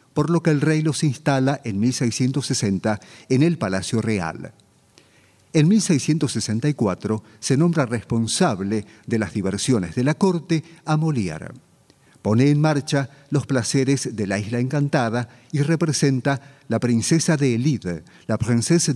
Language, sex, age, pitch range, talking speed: Spanish, male, 50-69, 115-155 Hz, 135 wpm